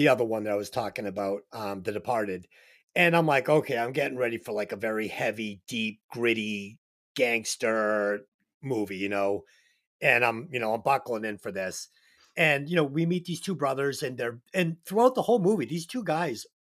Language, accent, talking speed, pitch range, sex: English, American, 200 wpm, 120-185 Hz, male